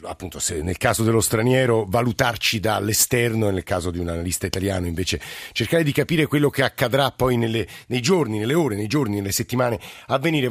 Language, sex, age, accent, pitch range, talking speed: Italian, male, 50-69, native, 120-145 Hz, 190 wpm